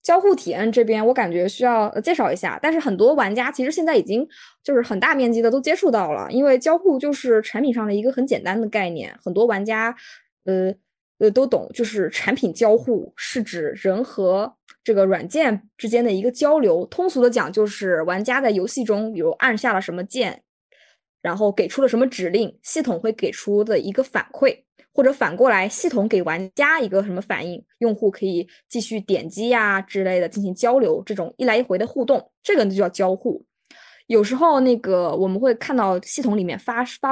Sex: female